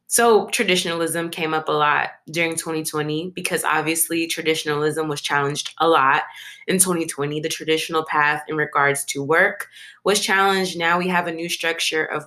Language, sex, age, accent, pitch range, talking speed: English, female, 20-39, American, 160-195 Hz, 160 wpm